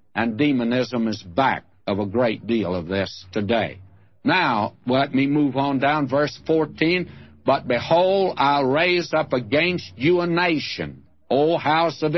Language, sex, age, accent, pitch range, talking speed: English, male, 60-79, American, 115-155 Hz, 155 wpm